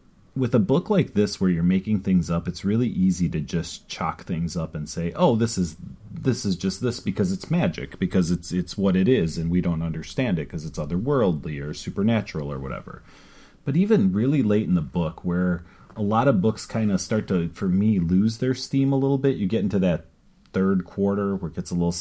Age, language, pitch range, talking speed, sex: 40-59, English, 85-115 Hz, 225 wpm, male